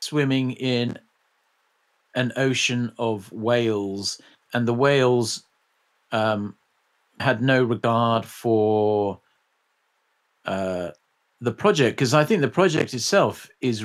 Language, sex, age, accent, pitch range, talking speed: English, male, 50-69, British, 105-130 Hz, 105 wpm